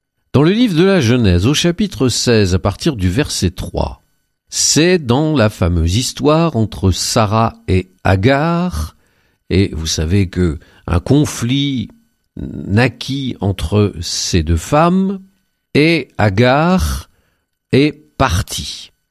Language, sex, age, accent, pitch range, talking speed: French, male, 50-69, French, 95-150 Hz, 115 wpm